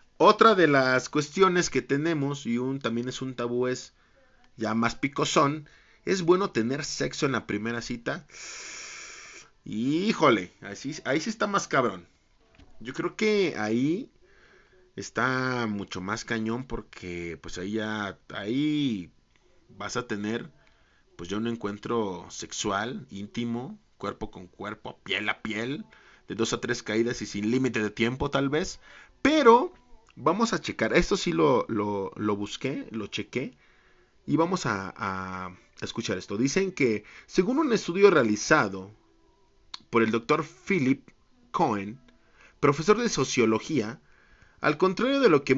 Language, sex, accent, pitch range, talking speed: Spanish, male, Mexican, 110-155 Hz, 140 wpm